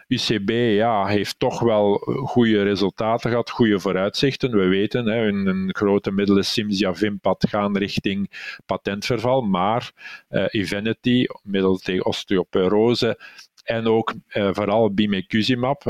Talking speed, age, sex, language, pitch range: 125 wpm, 50-69, male, Dutch, 100-110 Hz